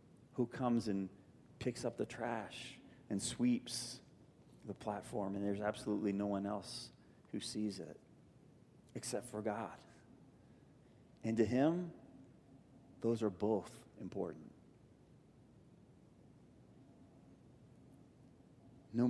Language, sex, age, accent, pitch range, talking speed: English, male, 40-59, American, 110-140 Hz, 95 wpm